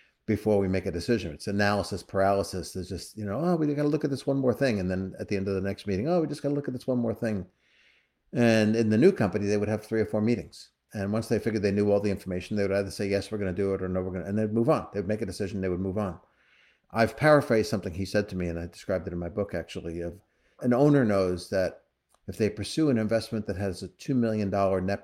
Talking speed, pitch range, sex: 290 wpm, 95-110 Hz, male